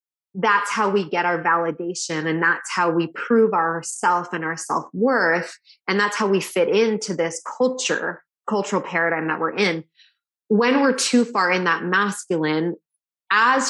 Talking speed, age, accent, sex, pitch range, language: 160 wpm, 20-39, American, female, 165-195 Hz, English